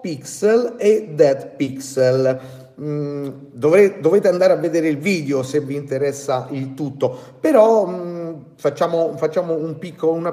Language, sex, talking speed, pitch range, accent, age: Italian, male, 130 wpm, 135-200 Hz, native, 40-59